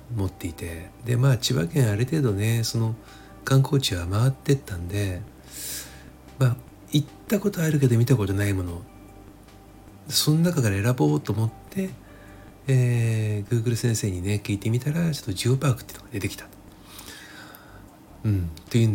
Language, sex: Japanese, male